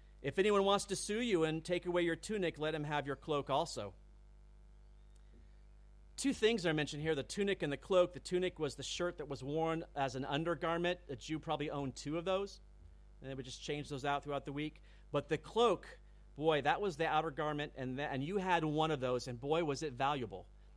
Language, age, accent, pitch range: English, 40-59, American, 135-175 Hz